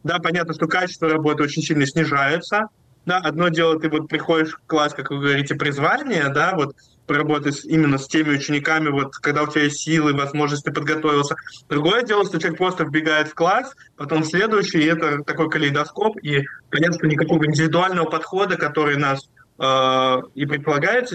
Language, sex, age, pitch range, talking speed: Russian, male, 20-39, 140-165 Hz, 175 wpm